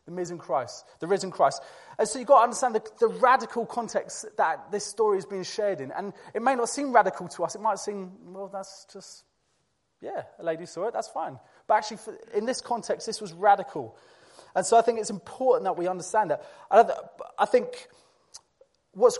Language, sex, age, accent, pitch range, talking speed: English, male, 20-39, British, 160-220 Hz, 205 wpm